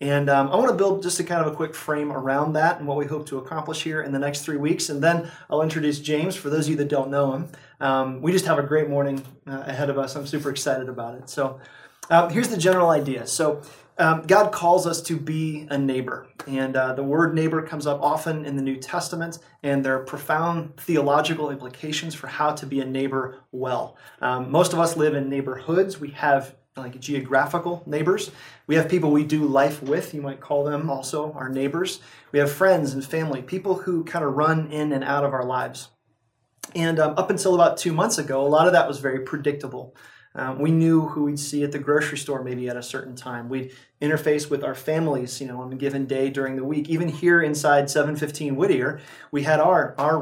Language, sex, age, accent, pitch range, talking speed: English, male, 30-49, American, 135-160 Hz, 230 wpm